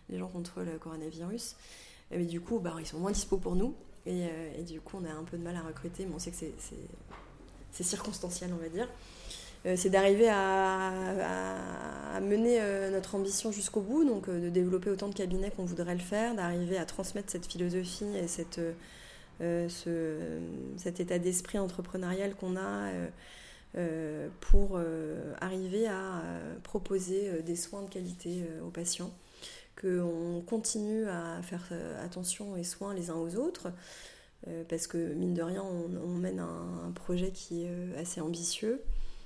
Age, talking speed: 20-39, 185 wpm